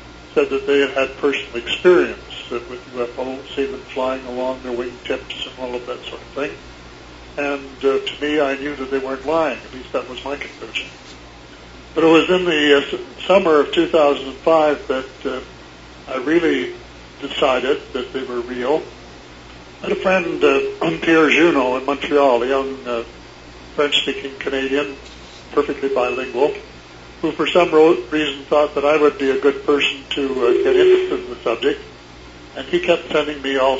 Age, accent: 60-79, American